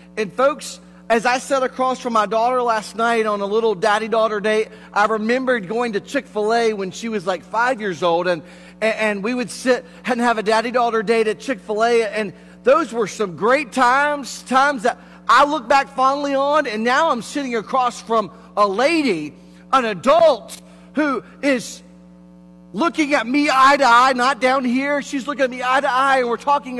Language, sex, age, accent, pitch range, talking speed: English, male, 40-59, American, 215-280 Hz, 190 wpm